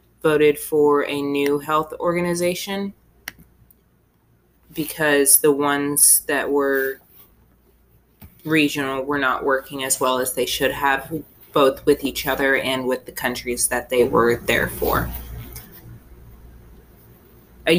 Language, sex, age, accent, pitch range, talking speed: English, female, 20-39, American, 135-155 Hz, 120 wpm